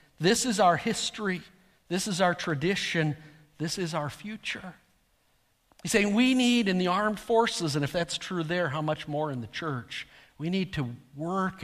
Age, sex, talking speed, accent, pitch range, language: 50-69, male, 180 wpm, American, 145-185 Hz, English